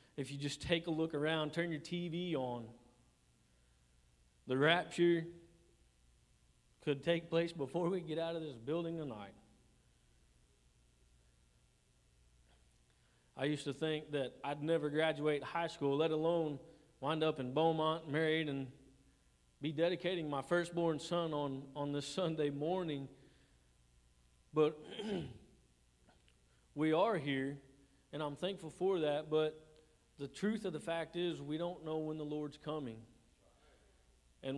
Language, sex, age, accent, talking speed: English, male, 40-59, American, 130 wpm